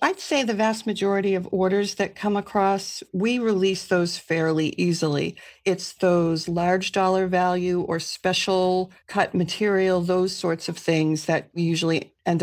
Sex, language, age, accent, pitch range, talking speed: female, English, 40-59, American, 165-190 Hz, 155 wpm